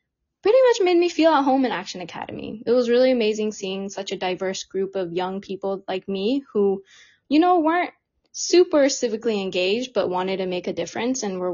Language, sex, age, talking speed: English, female, 20-39, 205 wpm